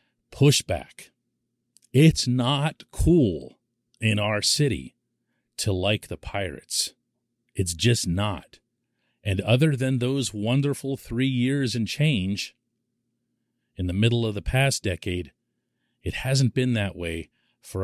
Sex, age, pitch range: male, 40-59, 105-130 Hz